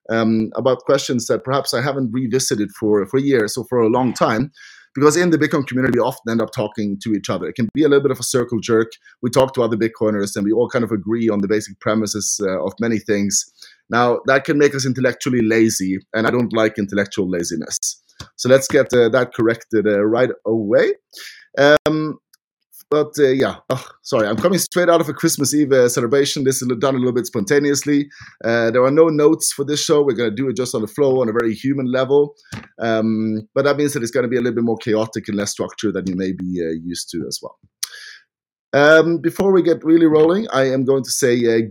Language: English